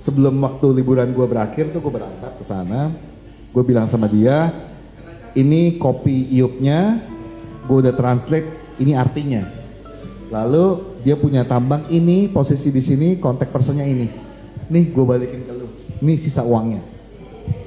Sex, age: male, 30-49